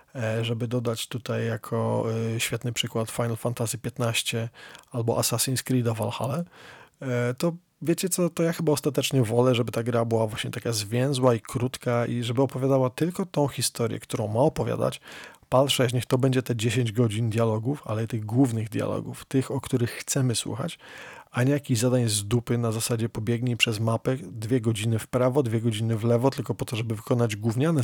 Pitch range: 115-135 Hz